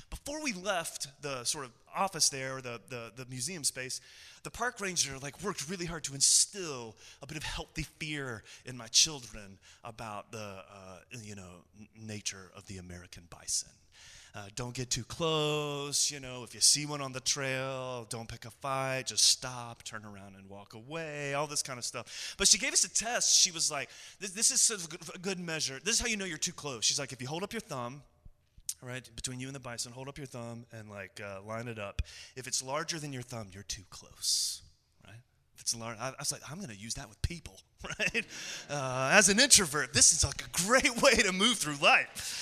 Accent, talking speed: American, 220 wpm